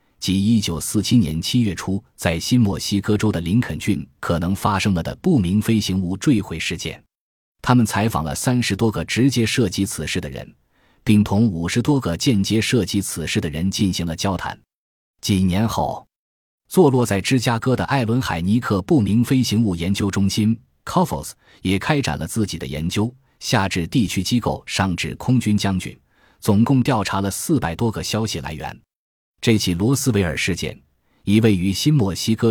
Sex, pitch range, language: male, 85-115 Hz, Chinese